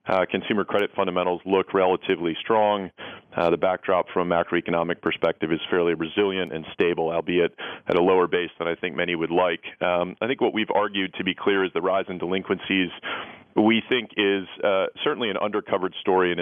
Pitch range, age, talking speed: 90-100 Hz, 40-59, 195 wpm